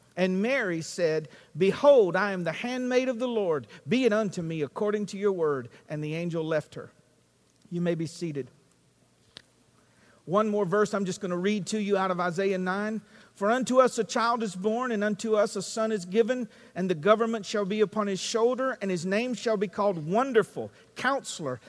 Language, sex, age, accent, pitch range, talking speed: English, male, 50-69, American, 185-255 Hz, 200 wpm